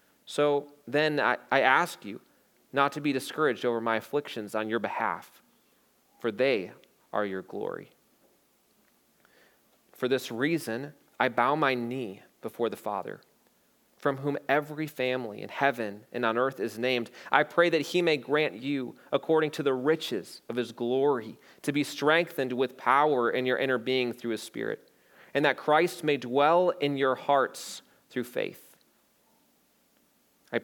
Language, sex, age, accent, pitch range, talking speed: English, male, 30-49, American, 125-155 Hz, 155 wpm